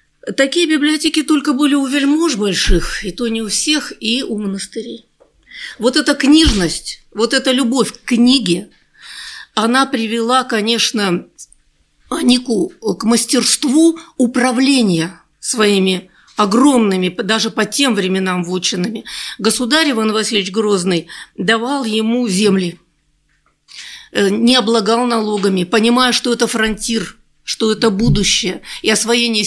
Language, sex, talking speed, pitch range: Russian, female, 115 wpm, 205-270 Hz